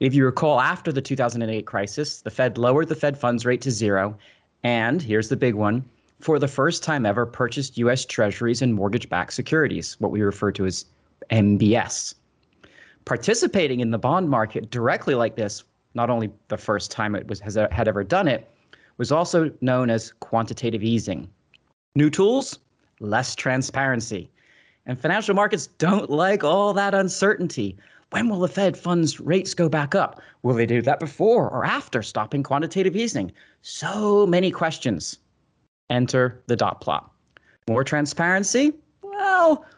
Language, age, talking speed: English, 30-49, 160 wpm